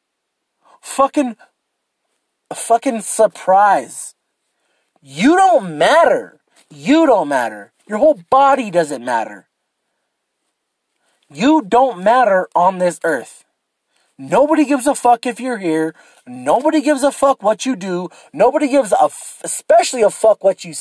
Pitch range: 195-290 Hz